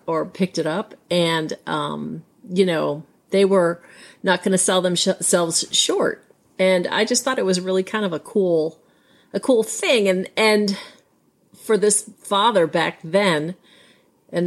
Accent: American